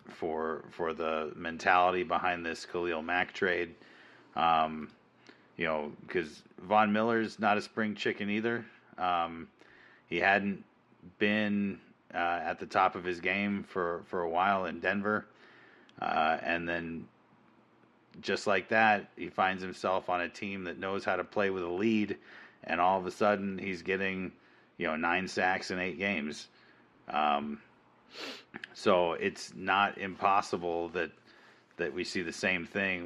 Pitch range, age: 85-100 Hz, 30-49